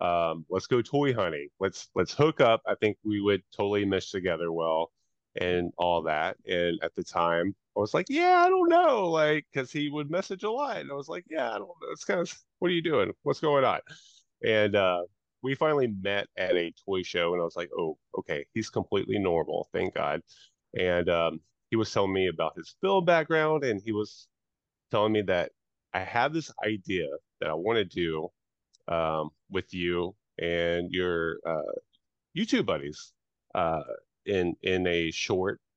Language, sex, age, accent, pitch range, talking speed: English, male, 30-49, American, 85-125 Hz, 190 wpm